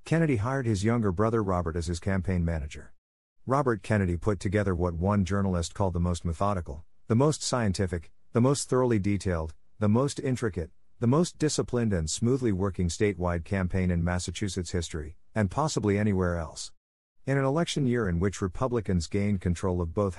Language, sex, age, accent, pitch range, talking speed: English, male, 50-69, American, 90-120 Hz, 170 wpm